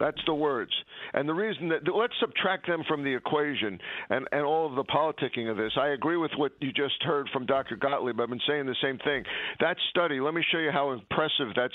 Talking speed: 235 wpm